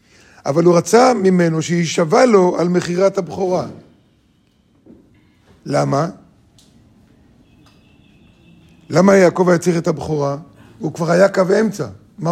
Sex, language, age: male, Hebrew, 50-69